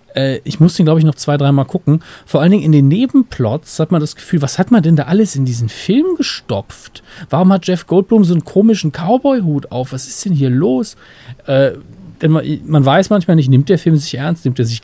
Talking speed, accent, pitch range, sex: 235 wpm, German, 125-160 Hz, male